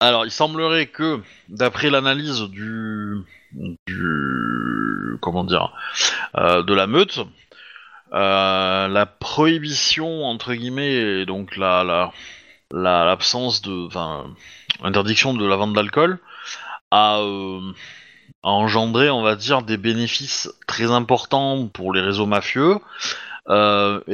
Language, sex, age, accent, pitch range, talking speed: French, male, 30-49, French, 100-130 Hz, 120 wpm